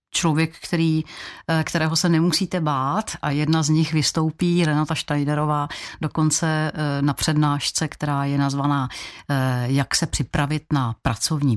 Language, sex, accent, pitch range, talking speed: Czech, female, native, 140-155 Hz, 125 wpm